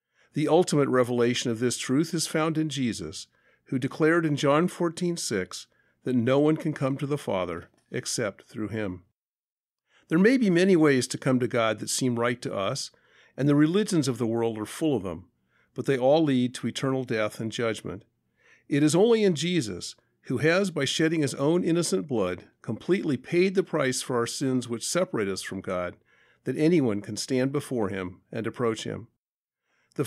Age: 50-69